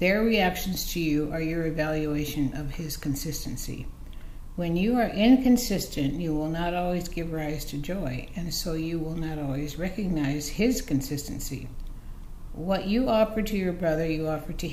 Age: 60-79